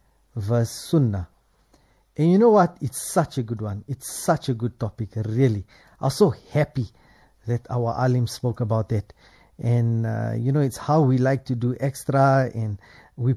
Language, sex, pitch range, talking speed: English, male, 115-185 Hz, 175 wpm